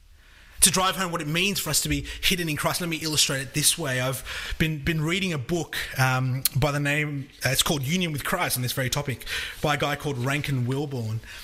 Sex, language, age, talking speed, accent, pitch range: male, English, 30-49, 235 wpm, Australian, 135-185 Hz